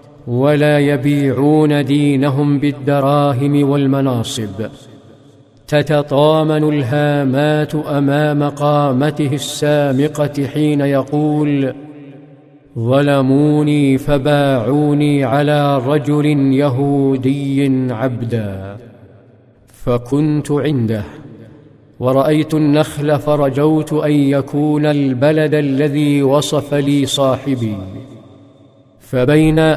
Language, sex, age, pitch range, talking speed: Arabic, male, 50-69, 135-150 Hz, 60 wpm